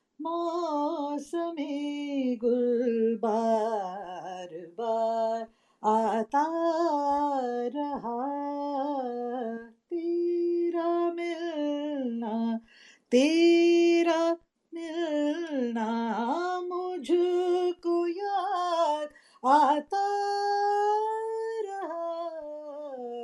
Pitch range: 245-345 Hz